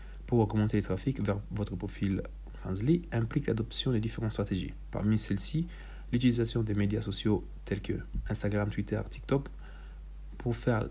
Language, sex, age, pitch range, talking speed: Italian, male, 40-59, 100-120 Hz, 145 wpm